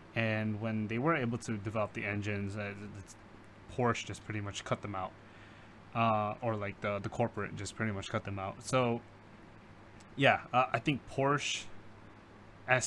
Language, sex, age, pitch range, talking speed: English, male, 20-39, 105-115 Hz, 175 wpm